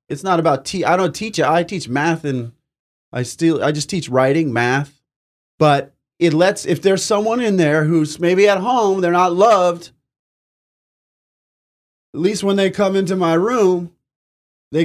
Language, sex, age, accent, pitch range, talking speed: English, male, 20-39, American, 140-185 Hz, 175 wpm